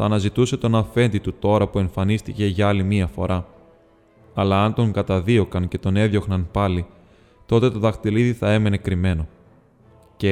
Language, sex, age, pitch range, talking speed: Greek, male, 20-39, 95-110 Hz, 155 wpm